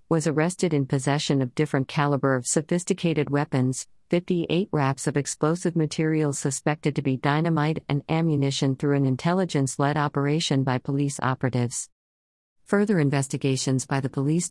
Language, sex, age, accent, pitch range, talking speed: English, female, 50-69, American, 130-155 Hz, 135 wpm